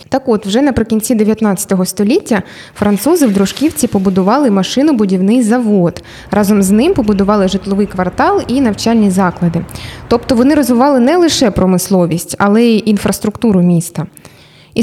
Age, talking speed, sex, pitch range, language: 20-39, 130 wpm, female, 200-260 Hz, Ukrainian